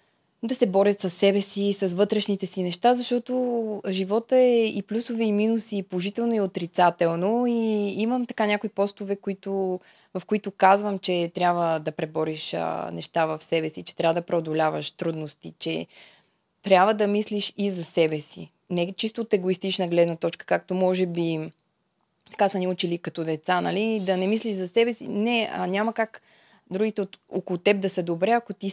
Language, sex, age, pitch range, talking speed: Bulgarian, female, 20-39, 170-210 Hz, 180 wpm